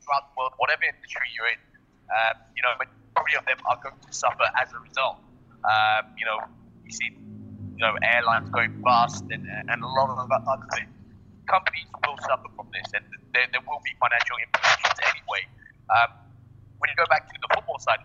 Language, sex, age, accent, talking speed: English, male, 30-49, British, 195 wpm